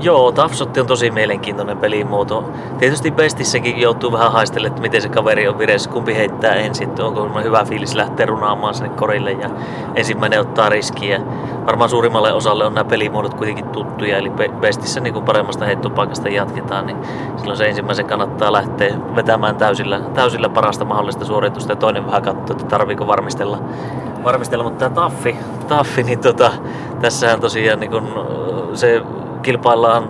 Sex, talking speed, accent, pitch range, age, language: male, 155 wpm, native, 105-125 Hz, 30-49, Finnish